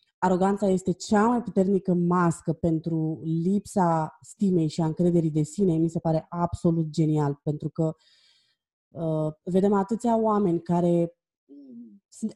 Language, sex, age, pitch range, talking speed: Romanian, female, 20-39, 155-195 Hz, 130 wpm